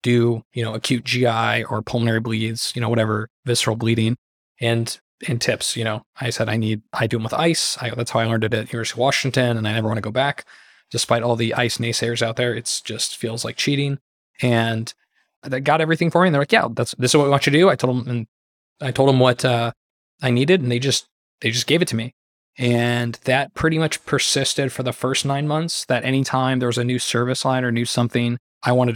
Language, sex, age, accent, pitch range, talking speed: English, male, 20-39, American, 115-130 Hz, 245 wpm